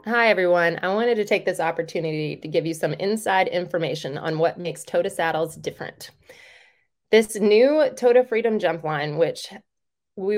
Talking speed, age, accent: 160 wpm, 20-39, American